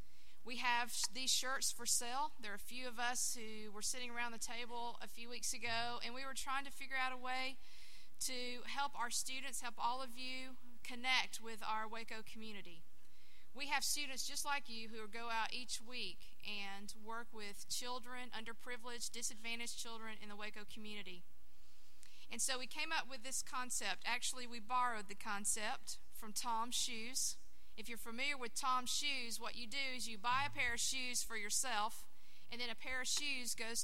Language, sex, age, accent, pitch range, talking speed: English, female, 40-59, American, 205-250 Hz, 190 wpm